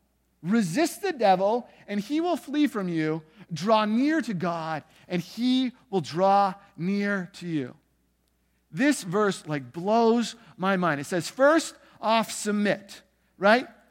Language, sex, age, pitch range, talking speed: English, male, 50-69, 180-245 Hz, 140 wpm